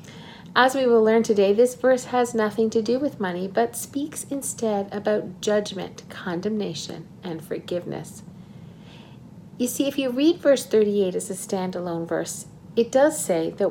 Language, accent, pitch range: English, American, 185-245 Hz